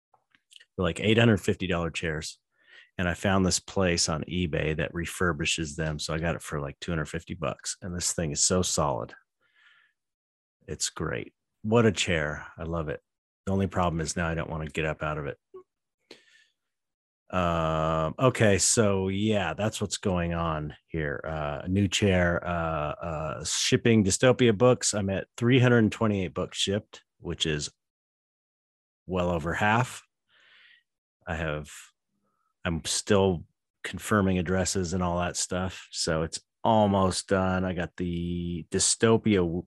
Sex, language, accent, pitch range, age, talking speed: male, English, American, 85-100 Hz, 30-49, 140 wpm